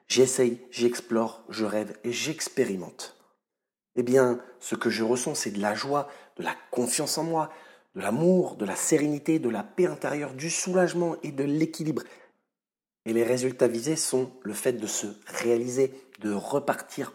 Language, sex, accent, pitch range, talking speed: French, male, French, 120-155 Hz, 165 wpm